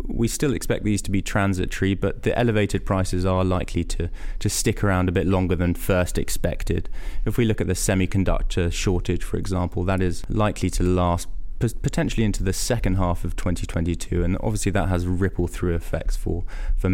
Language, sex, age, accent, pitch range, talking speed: English, male, 20-39, British, 90-105 Hz, 190 wpm